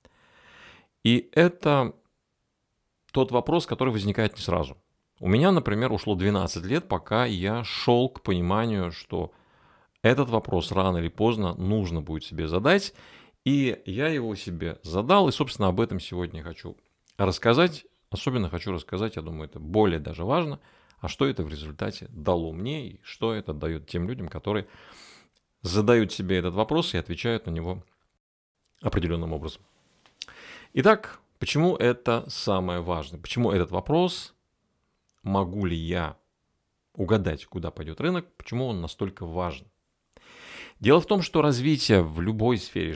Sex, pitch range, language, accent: male, 85-120 Hz, Russian, native